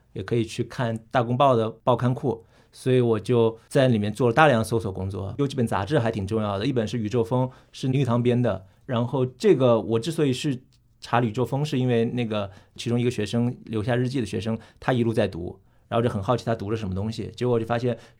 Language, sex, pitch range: Chinese, male, 105-125 Hz